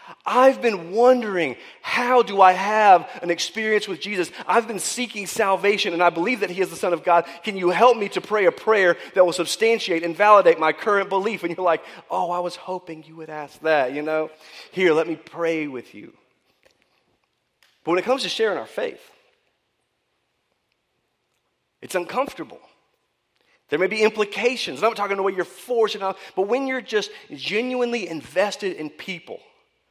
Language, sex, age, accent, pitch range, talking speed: English, male, 30-49, American, 170-240 Hz, 185 wpm